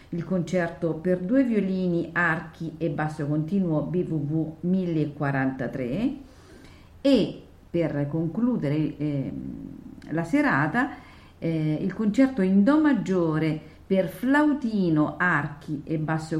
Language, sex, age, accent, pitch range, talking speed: Italian, female, 50-69, native, 155-200 Hz, 100 wpm